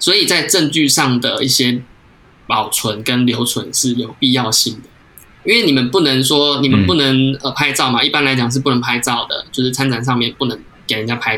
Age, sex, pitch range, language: 10-29, male, 120-145 Hz, Chinese